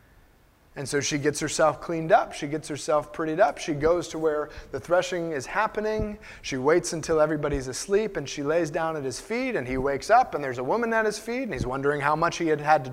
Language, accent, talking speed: English, American, 240 wpm